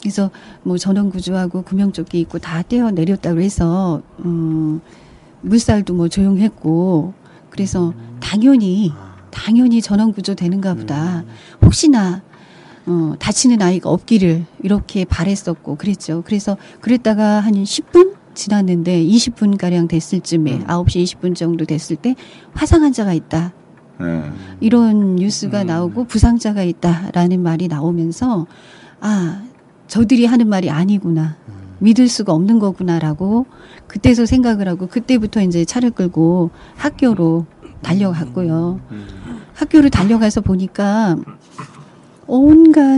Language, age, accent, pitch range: Korean, 40-59, native, 170-225 Hz